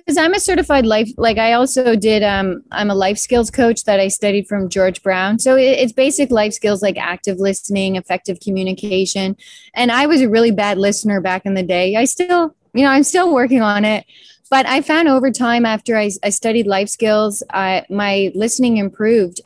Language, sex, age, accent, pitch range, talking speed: English, female, 20-39, American, 195-245 Hz, 205 wpm